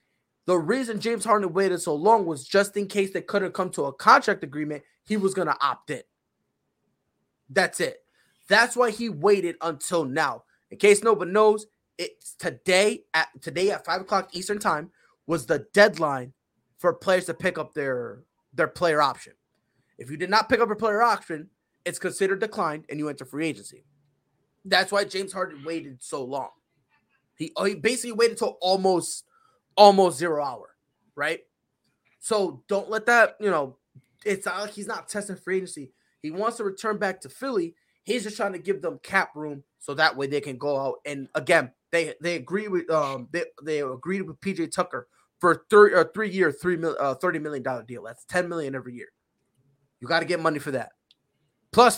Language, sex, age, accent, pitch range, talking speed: English, male, 20-39, American, 150-205 Hz, 190 wpm